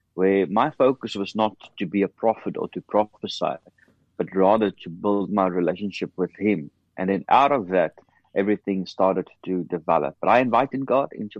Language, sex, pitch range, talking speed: English, male, 95-110 Hz, 180 wpm